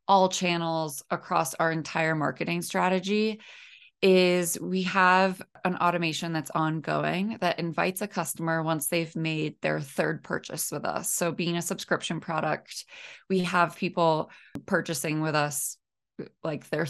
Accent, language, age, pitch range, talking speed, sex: American, English, 20-39, 160-195 Hz, 140 wpm, female